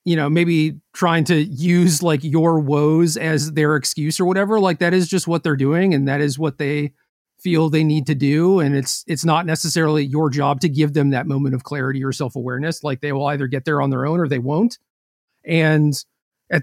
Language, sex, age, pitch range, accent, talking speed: English, male, 40-59, 150-175 Hz, American, 220 wpm